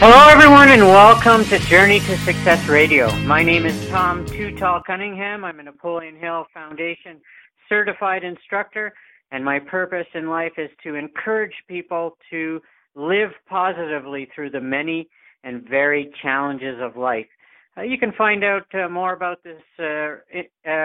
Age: 50-69